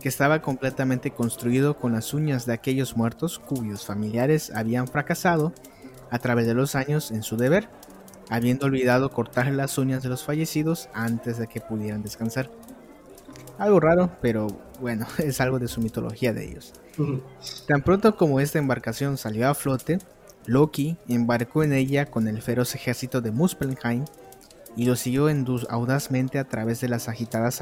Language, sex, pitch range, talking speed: English, male, 115-145 Hz, 160 wpm